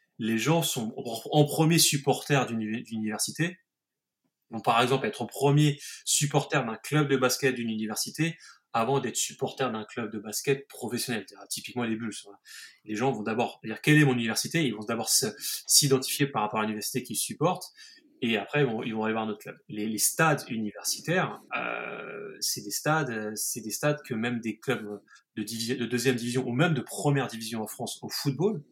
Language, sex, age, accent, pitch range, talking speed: French, male, 20-39, French, 110-145 Hz, 190 wpm